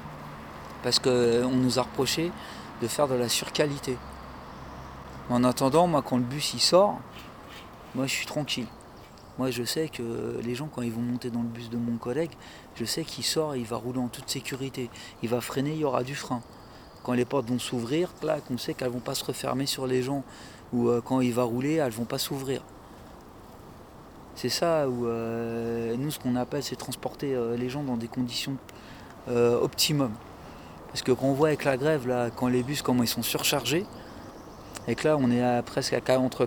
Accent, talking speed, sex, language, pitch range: French, 205 wpm, male, French, 120-140 Hz